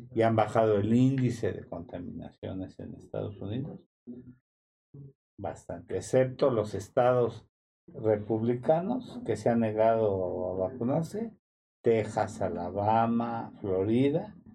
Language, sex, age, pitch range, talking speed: Spanish, male, 50-69, 100-130 Hz, 100 wpm